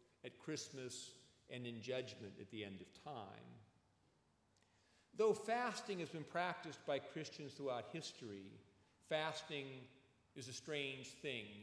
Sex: male